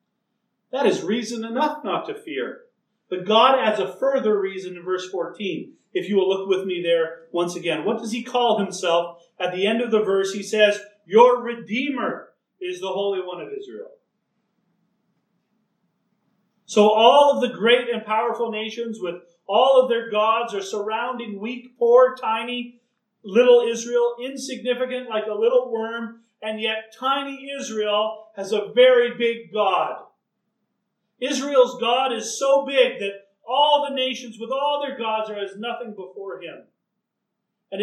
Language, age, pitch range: English, 40-59, 205-245 Hz